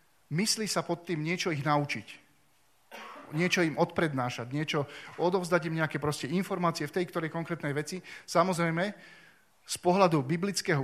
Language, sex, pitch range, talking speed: Slovak, male, 140-170 Hz, 135 wpm